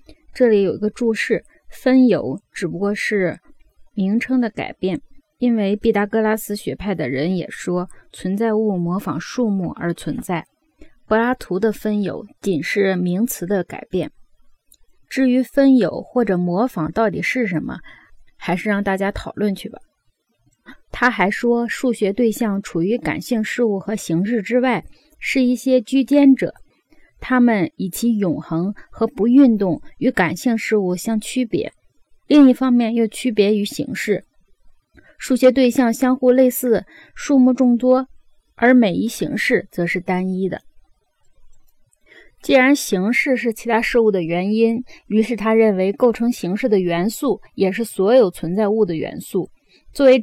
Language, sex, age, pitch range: Chinese, female, 20-39, 190-245 Hz